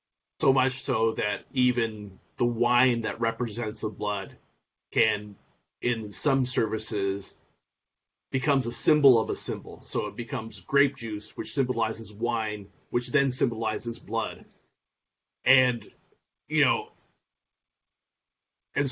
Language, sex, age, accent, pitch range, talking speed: English, male, 30-49, American, 115-135 Hz, 115 wpm